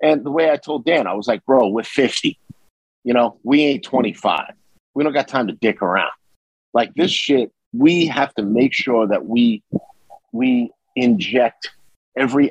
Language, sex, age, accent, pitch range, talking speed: English, male, 50-69, American, 115-145 Hz, 175 wpm